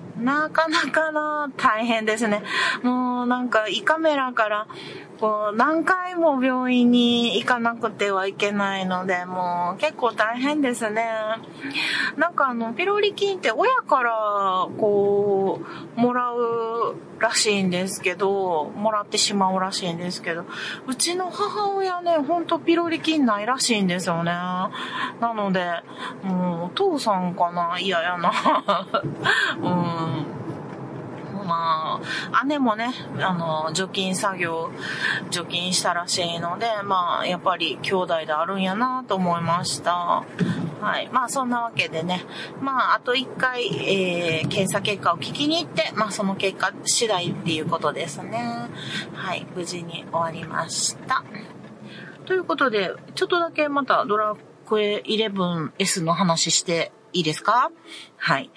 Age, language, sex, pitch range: 30-49, Japanese, female, 175-250 Hz